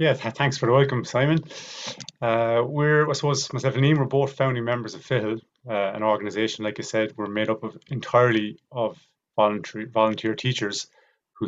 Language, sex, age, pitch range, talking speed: English, male, 30-49, 110-130 Hz, 185 wpm